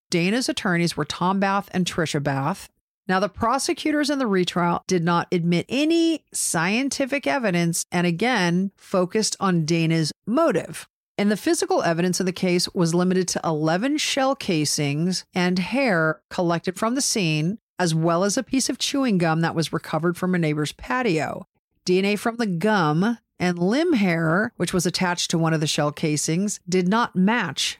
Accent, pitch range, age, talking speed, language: American, 165-210 Hz, 50-69, 170 wpm, English